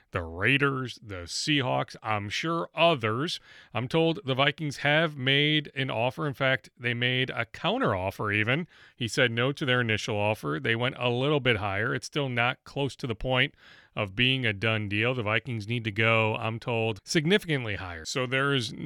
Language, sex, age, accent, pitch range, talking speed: English, male, 40-59, American, 115-150 Hz, 190 wpm